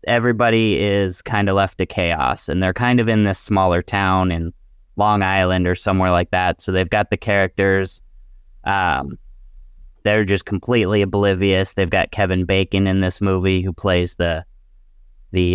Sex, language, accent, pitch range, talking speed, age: male, English, American, 85-105 Hz, 165 wpm, 10-29